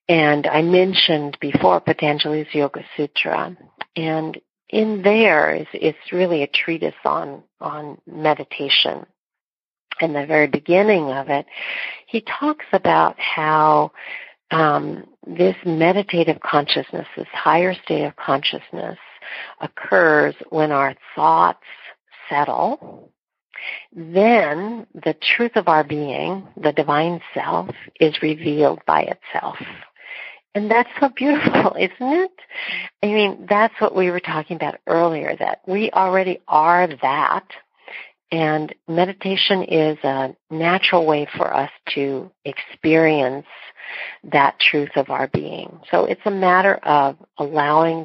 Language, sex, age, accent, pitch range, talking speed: English, female, 50-69, American, 150-195 Hz, 120 wpm